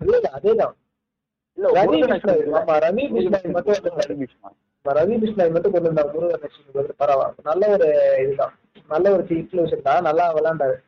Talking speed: 125 wpm